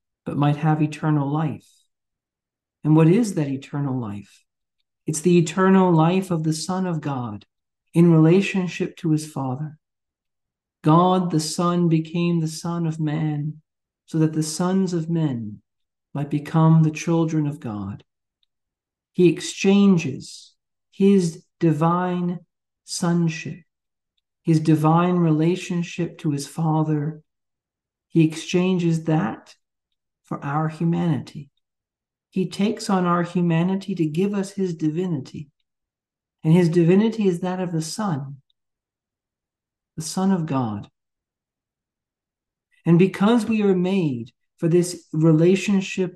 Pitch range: 145-180 Hz